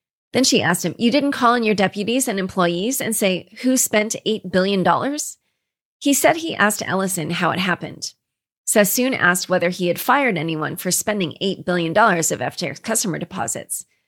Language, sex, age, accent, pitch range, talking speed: English, female, 30-49, American, 175-235 Hz, 175 wpm